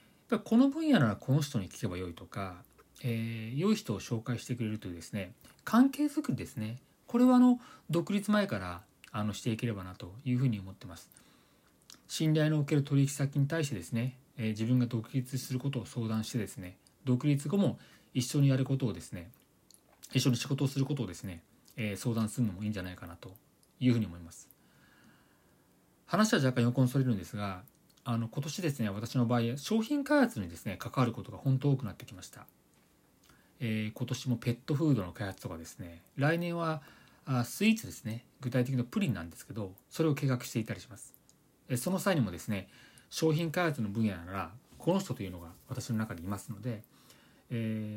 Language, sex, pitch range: Japanese, male, 110-145 Hz